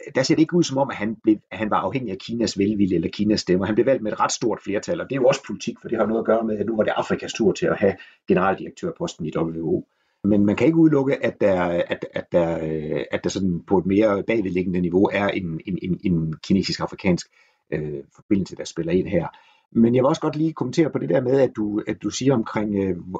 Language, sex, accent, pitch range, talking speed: Danish, male, native, 95-135 Hz, 255 wpm